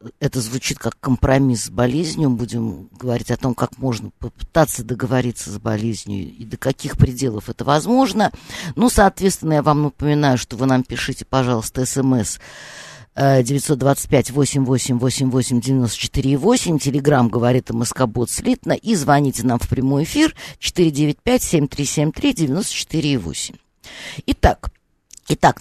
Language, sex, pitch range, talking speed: Russian, female, 125-175 Hz, 115 wpm